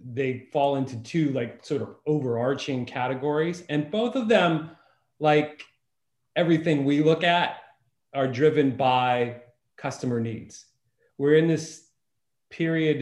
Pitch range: 125-155 Hz